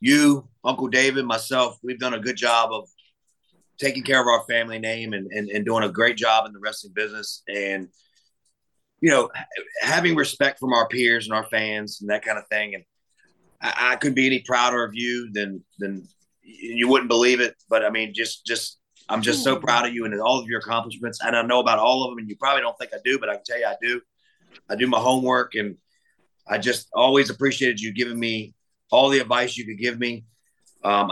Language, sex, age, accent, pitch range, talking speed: English, male, 30-49, American, 110-125 Hz, 220 wpm